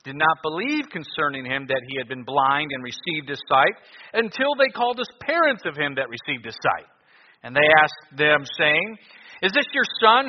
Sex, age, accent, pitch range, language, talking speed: male, 50-69, American, 140-215 Hz, English, 200 wpm